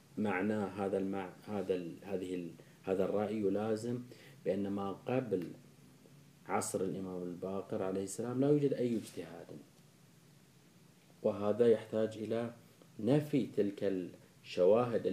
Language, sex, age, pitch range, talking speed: Arabic, male, 30-49, 95-120 Hz, 110 wpm